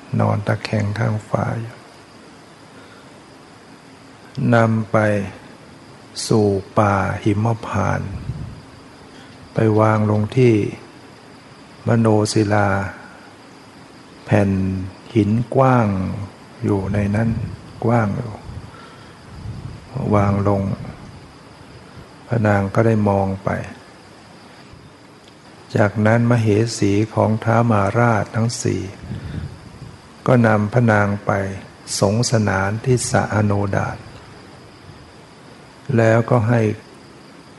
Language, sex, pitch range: Thai, male, 100-120 Hz